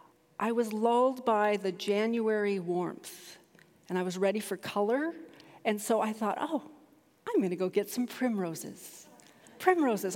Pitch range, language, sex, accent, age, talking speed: 195-260 Hz, English, female, American, 40-59, 155 wpm